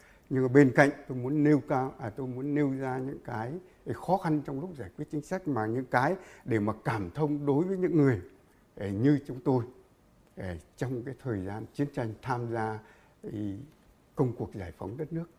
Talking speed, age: 195 wpm, 60-79